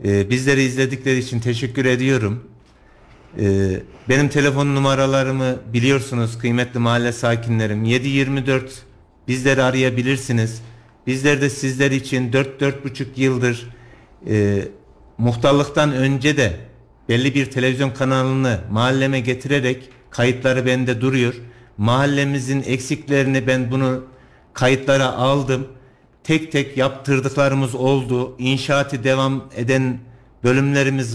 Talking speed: 90 wpm